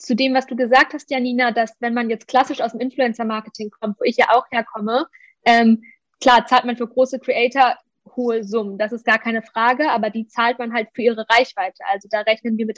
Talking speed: 225 wpm